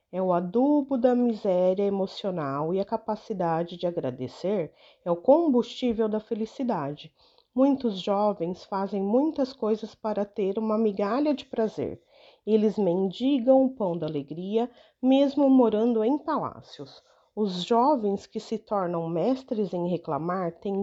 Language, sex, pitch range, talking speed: Portuguese, female, 185-250 Hz, 135 wpm